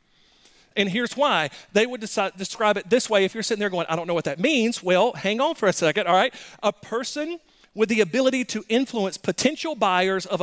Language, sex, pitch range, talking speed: English, male, 180-245 Hz, 220 wpm